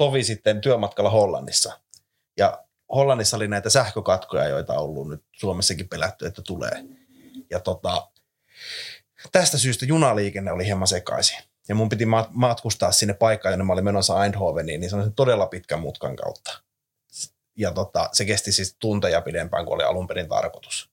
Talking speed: 155 wpm